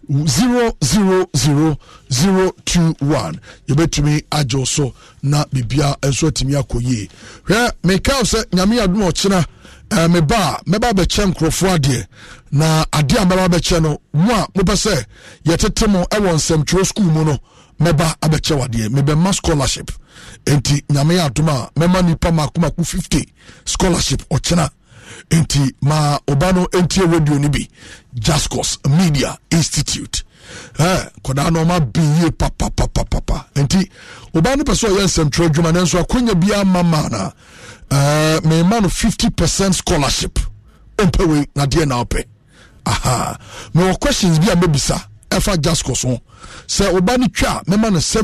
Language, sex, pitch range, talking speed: English, male, 140-185 Hz, 135 wpm